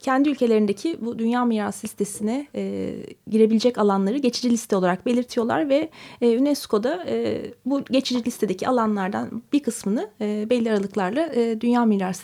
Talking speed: 120 wpm